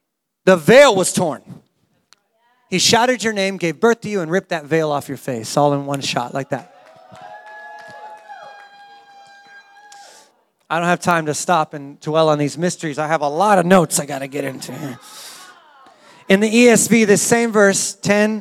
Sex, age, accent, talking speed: male, 30-49, American, 180 wpm